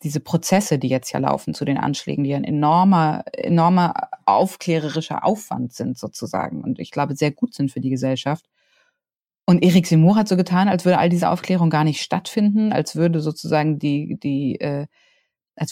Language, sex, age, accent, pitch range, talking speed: German, female, 30-49, German, 150-175 Hz, 185 wpm